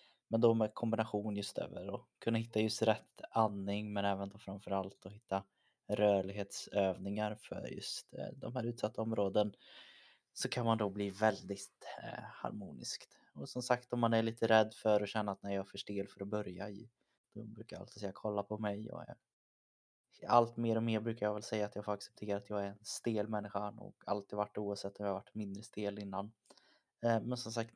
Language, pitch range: Swedish, 100-110 Hz